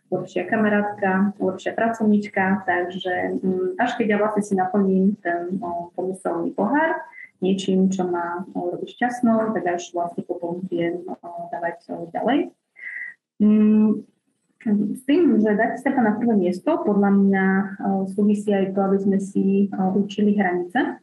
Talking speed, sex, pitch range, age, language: 125 wpm, female, 185-210 Hz, 20-39, Slovak